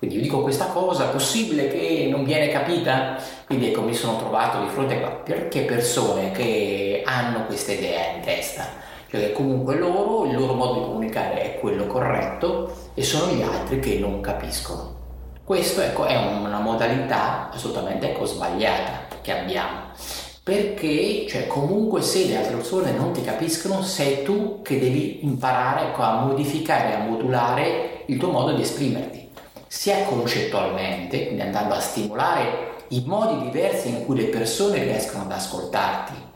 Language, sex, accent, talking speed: Italian, male, native, 155 wpm